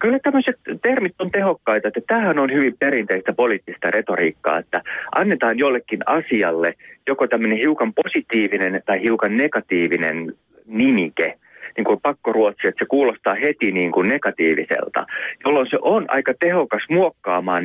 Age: 30-49